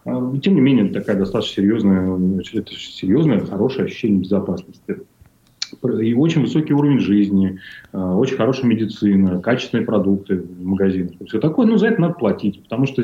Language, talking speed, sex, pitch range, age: Russian, 145 wpm, male, 95-135 Hz, 30-49